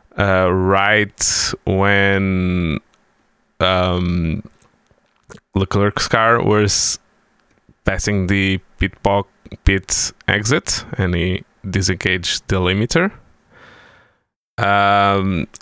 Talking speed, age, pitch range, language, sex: 75 wpm, 20-39, 90-110 Hz, Portuguese, male